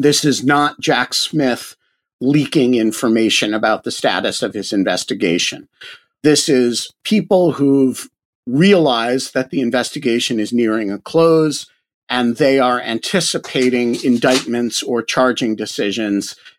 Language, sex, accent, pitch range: English, male, American, 115-145 Hz